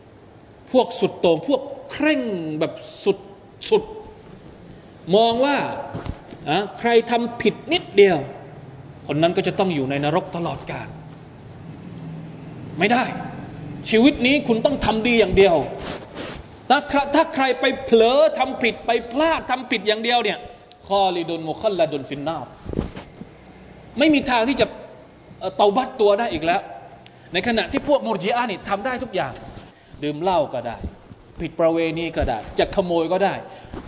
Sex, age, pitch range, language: male, 20-39, 150-230 Hz, Thai